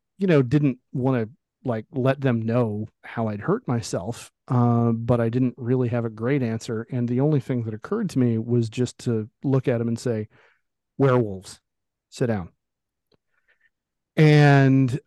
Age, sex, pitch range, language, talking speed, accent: 40-59, male, 115-135 Hz, English, 165 wpm, American